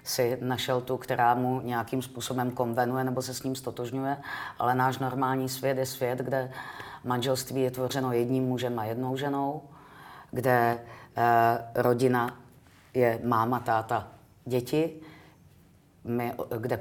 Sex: female